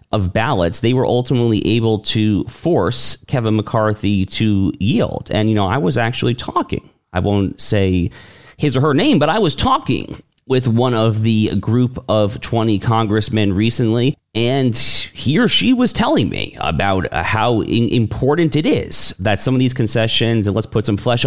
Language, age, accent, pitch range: English, 40-59, American, 95-120 Hz